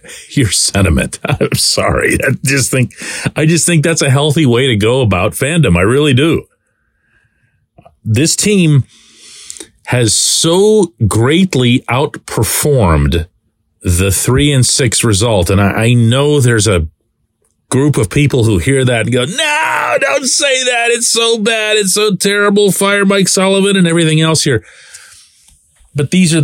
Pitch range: 105-160 Hz